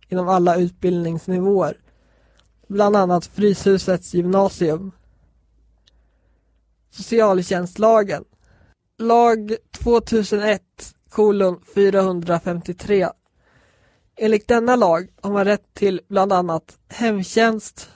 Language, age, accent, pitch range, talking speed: Swedish, 20-39, native, 175-205 Hz, 75 wpm